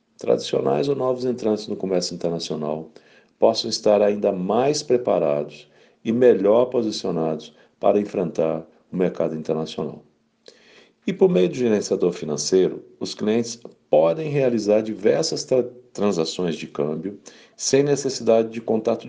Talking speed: 120 wpm